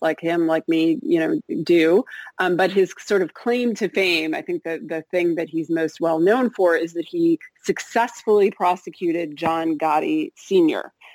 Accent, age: American, 40-59